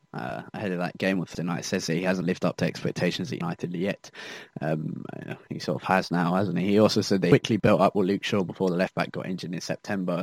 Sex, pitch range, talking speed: male, 90-110 Hz, 265 wpm